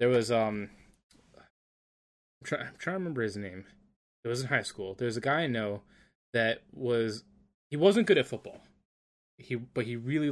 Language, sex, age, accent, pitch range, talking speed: English, male, 20-39, American, 110-125 Hz, 185 wpm